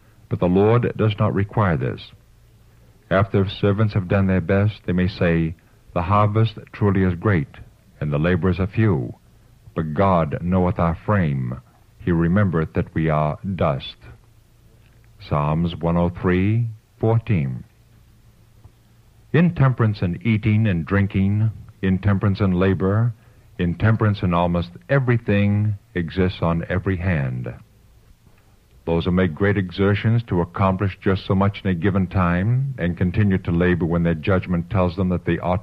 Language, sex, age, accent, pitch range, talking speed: English, male, 60-79, American, 90-110 Hz, 140 wpm